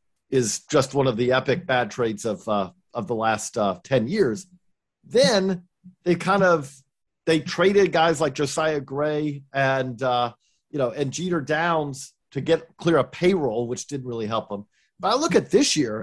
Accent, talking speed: American, 185 wpm